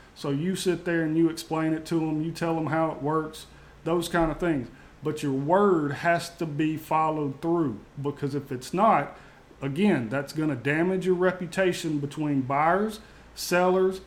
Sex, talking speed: male, 180 wpm